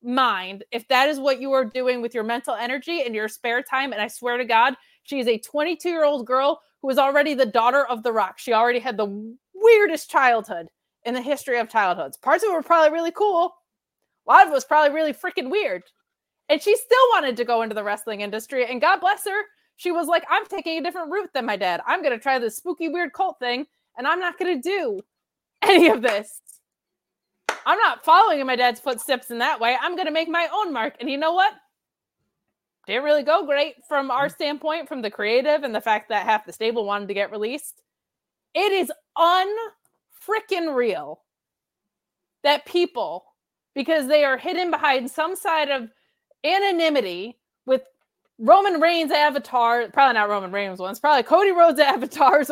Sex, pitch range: female, 245-335 Hz